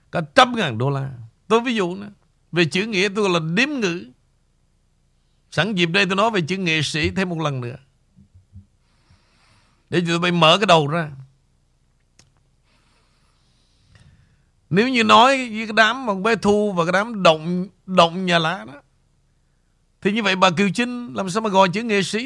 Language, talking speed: Vietnamese, 180 wpm